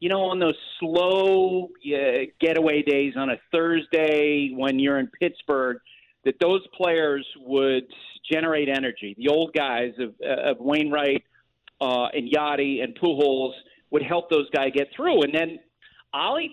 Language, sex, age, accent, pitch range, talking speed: English, male, 40-59, American, 140-195 Hz, 155 wpm